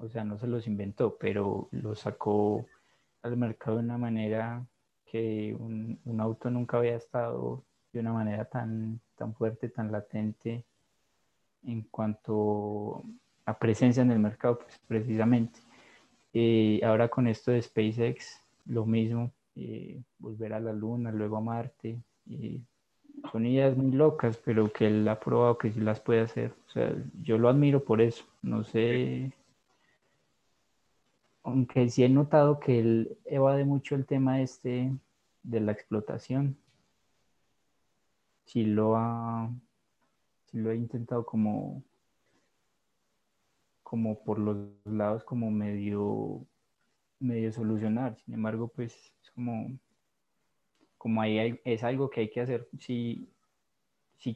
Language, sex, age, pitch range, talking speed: Spanish, male, 20-39, 110-125 Hz, 135 wpm